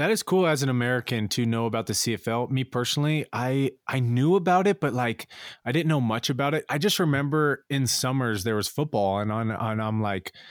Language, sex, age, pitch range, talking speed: English, male, 20-39, 105-125 Hz, 230 wpm